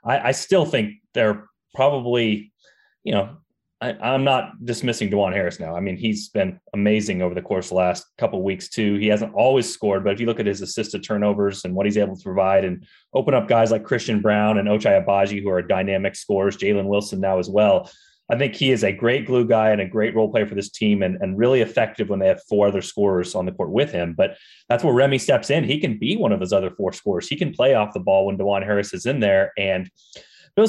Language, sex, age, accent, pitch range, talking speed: English, male, 30-49, American, 100-125 Hz, 245 wpm